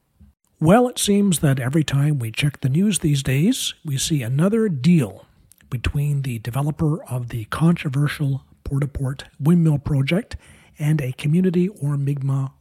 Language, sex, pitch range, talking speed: English, male, 125-165 Hz, 145 wpm